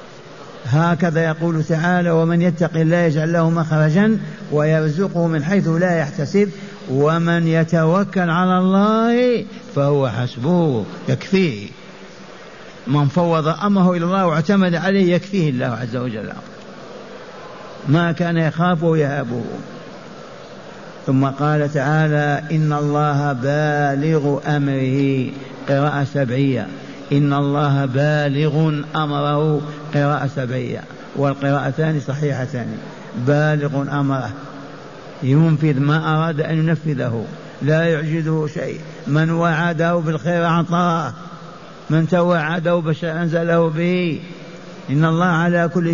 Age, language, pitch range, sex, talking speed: 50-69, Arabic, 145-170 Hz, male, 100 wpm